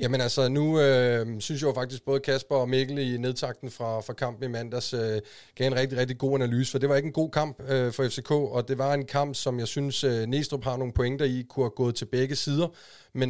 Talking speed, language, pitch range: 255 wpm, Danish, 125-140 Hz